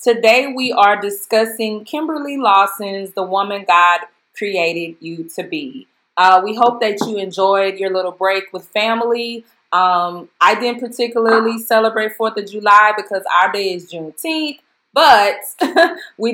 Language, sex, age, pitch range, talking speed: English, female, 20-39, 175-215 Hz, 145 wpm